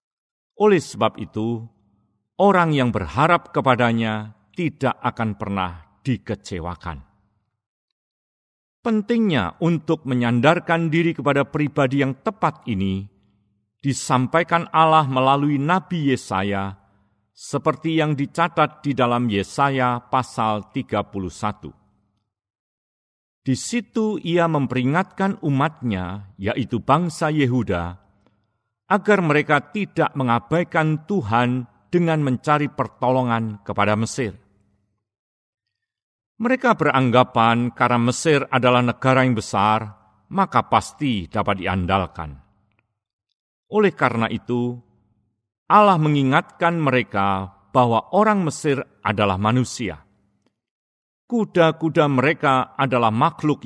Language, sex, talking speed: Indonesian, male, 85 wpm